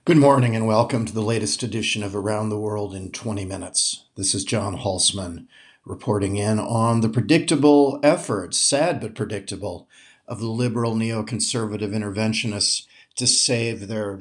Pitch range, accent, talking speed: 105-135 Hz, American, 150 wpm